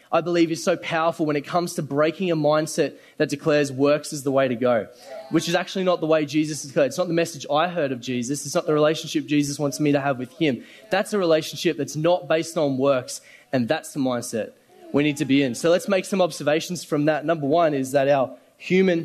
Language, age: English, 20-39